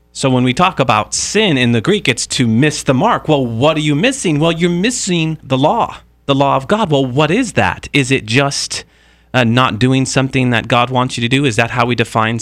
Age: 40-59